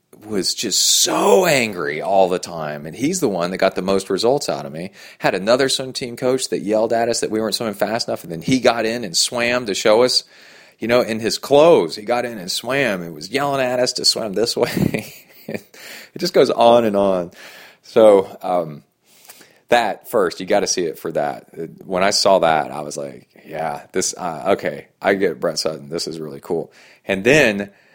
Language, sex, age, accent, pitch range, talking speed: English, male, 30-49, American, 95-125 Hz, 215 wpm